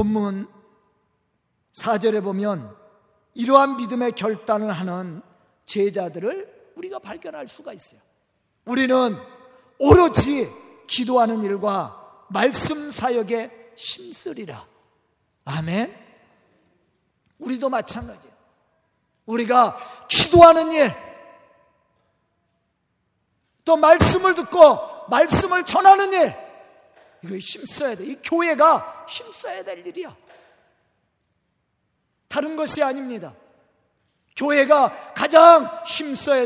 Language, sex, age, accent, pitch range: Korean, male, 50-69, native, 210-315 Hz